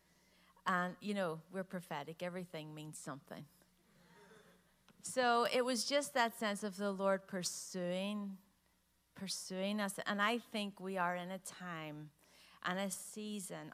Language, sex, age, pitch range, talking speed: English, female, 40-59, 165-190 Hz, 135 wpm